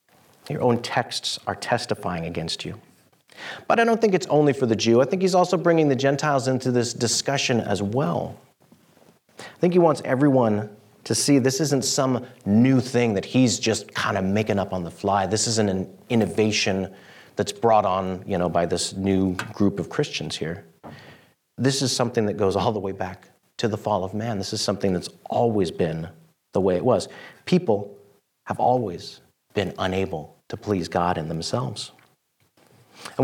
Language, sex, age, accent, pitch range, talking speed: English, male, 40-59, American, 100-140 Hz, 180 wpm